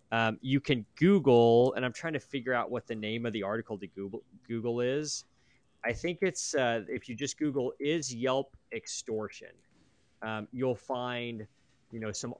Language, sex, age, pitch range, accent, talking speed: English, male, 20-39, 110-130 Hz, American, 180 wpm